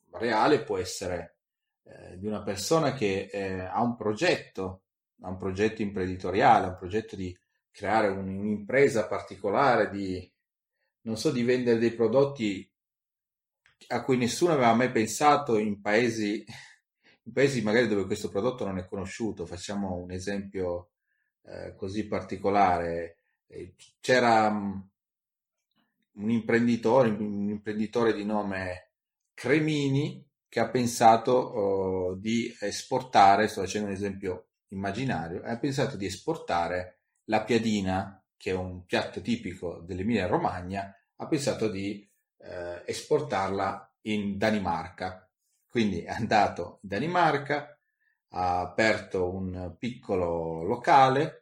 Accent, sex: native, male